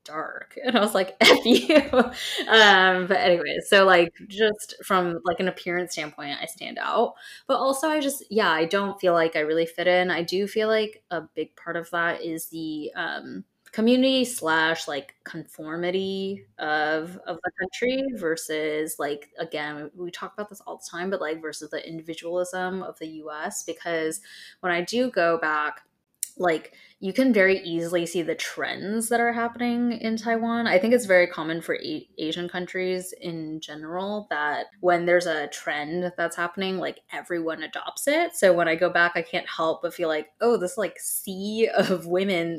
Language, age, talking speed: English, 10-29, 180 wpm